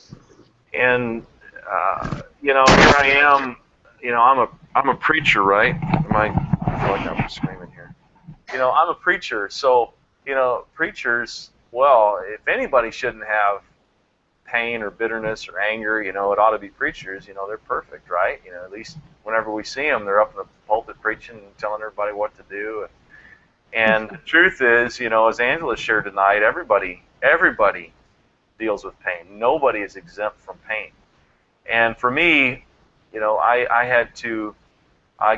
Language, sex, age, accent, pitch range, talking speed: English, male, 40-59, American, 100-120 Hz, 180 wpm